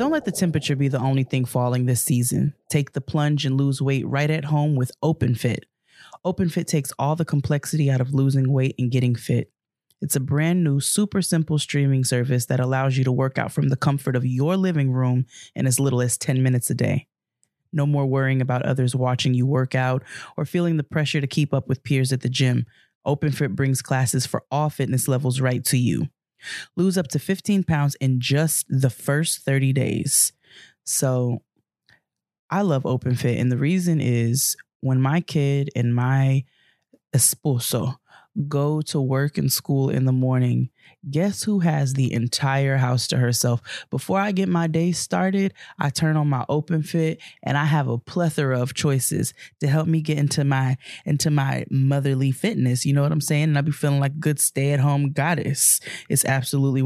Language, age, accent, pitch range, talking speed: English, 20-39, American, 130-155 Hz, 190 wpm